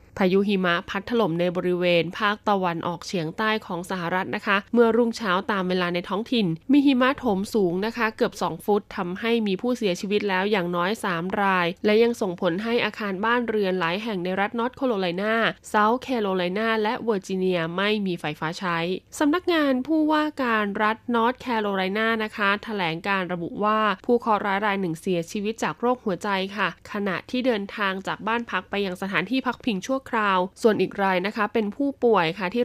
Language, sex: Thai, female